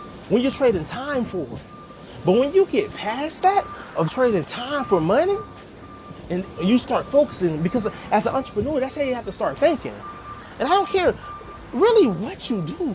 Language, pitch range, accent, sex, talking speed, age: English, 155-240 Hz, American, male, 180 wpm, 30-49